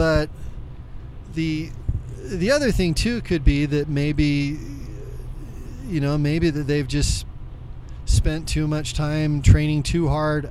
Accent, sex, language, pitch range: American, male, English, 125-160 Hz